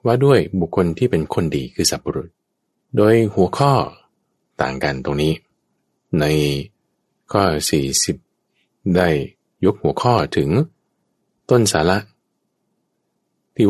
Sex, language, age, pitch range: male, Thai, 20-39, 75-95 Hz